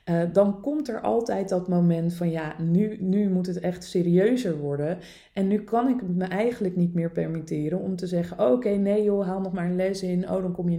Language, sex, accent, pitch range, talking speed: Dutch, female, Dutch, 165-195 Hz, 230 wpm